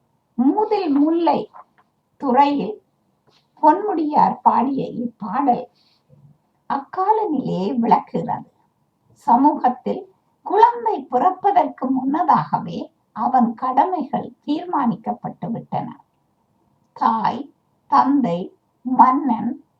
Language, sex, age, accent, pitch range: Tamil, female, 60-79, native, 235-310 Hz